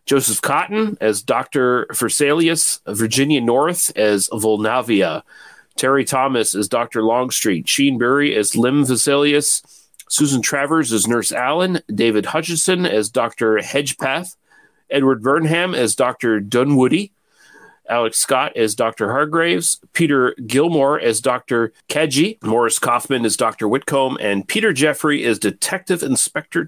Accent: American